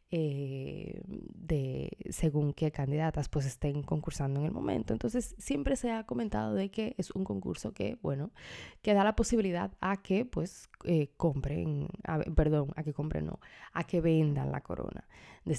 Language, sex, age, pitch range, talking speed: Spanish, female, 20-39, 150-190 Hz, 165 wpm